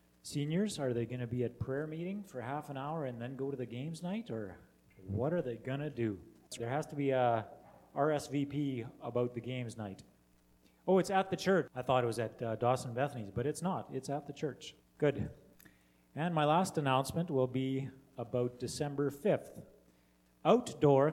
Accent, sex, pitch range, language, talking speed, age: American, male, 115-150 Hz, English, 195 wpm, 30-49